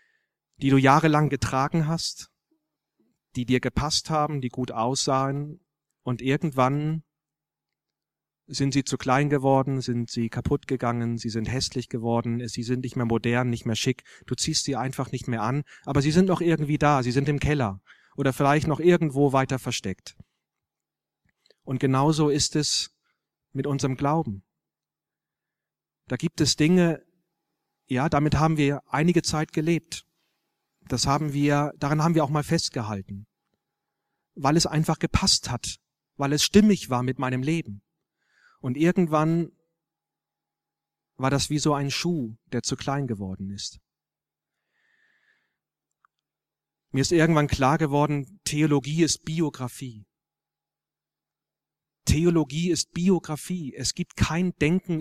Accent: German